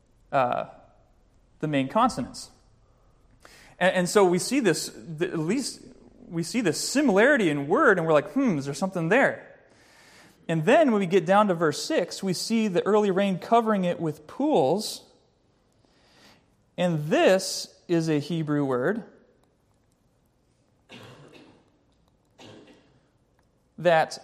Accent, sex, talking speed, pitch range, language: American, male, 125 wpm, 160-210 Hz, English